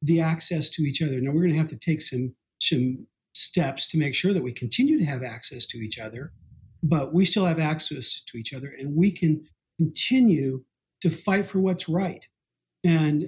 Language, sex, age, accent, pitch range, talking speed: English, male, 50-69, American, 135-180 Hz, 205 wpm